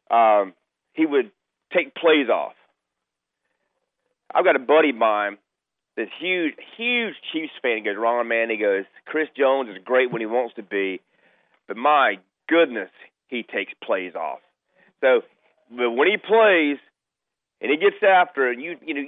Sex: male